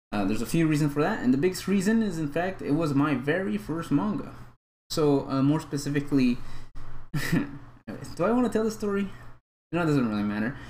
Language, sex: English, male